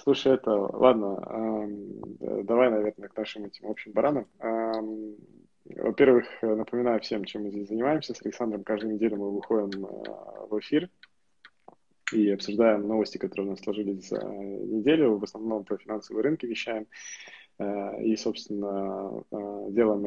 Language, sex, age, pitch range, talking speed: Russian, male, 20-39, 100-110 Hz, 130 wpm